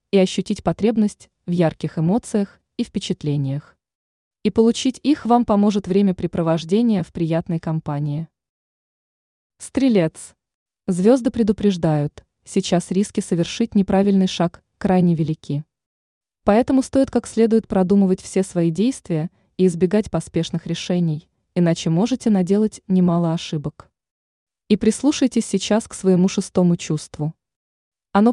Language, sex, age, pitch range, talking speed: Russian, female, 20-39, 170-220 Hz, 110 wpm